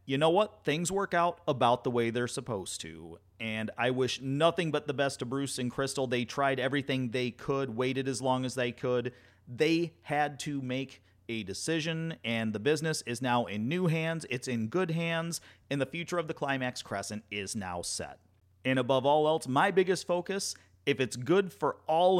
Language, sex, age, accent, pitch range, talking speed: English, male, 40-59, American, 115-155 Hz, 200 wpm